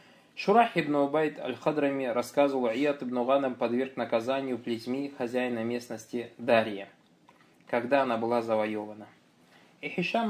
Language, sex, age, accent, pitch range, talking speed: Russian, male, 20-39, native, 125-160 Hz, 115 wpm